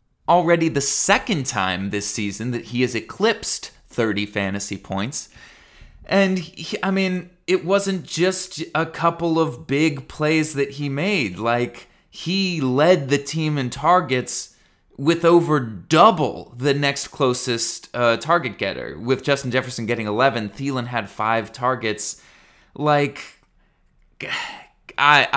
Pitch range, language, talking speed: 110-155 Hz, English, 130 wpm